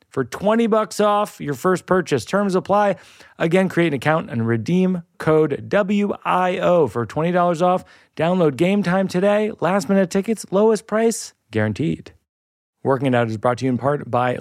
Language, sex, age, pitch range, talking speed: English, male, 30-49, 120-175 Hz, 160 wpm